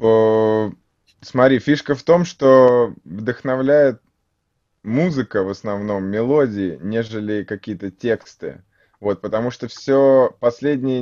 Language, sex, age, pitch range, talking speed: Russian, male, 20-39, 100-125 Hz, 100 wpm